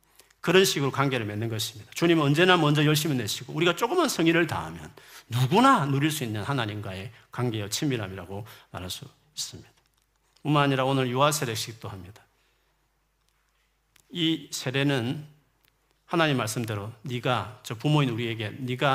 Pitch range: 120-155 Hz